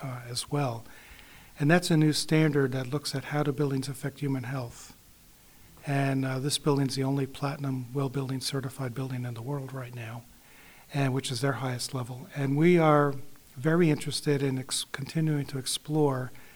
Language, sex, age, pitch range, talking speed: English, male, 50-69, 130-150 Hz, 180 wpm